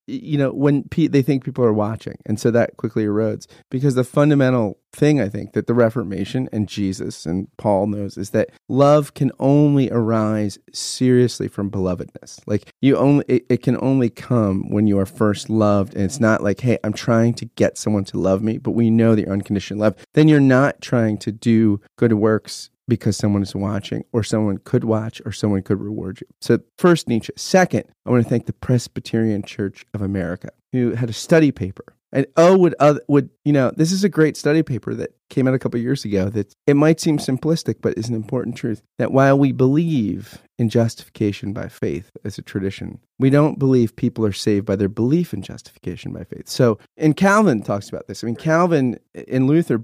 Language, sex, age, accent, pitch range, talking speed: English, male, 30-49, American, 105-140 Hz, 210 wpm